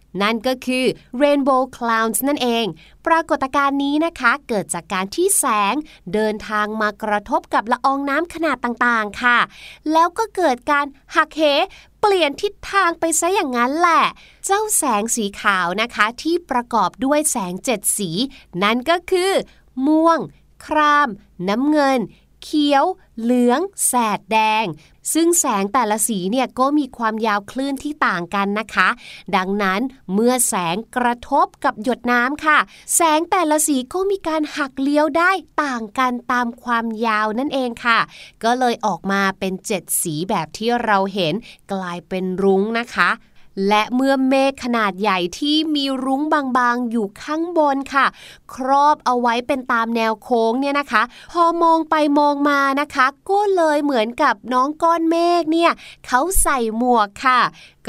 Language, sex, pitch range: Thai, female, 215-295 Hz